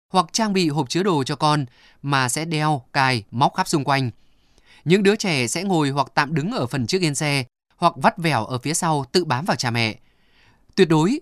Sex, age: male, 20-39